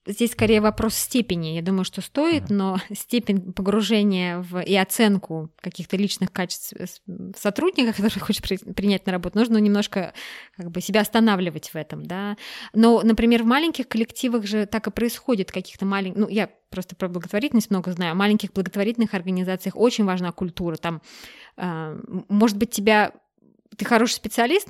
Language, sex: Russian, female